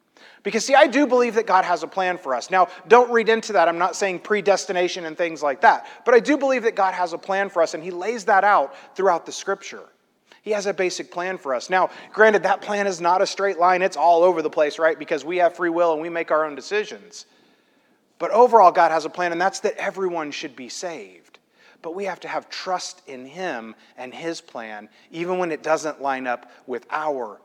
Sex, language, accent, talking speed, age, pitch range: male, English, American, 240 wpm, 30-49, 155-195 Hz